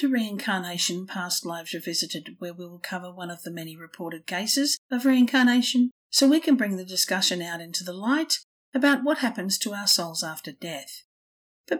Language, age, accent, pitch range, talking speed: English, 50-69, Australian, 180-250 Hz, 180 wpm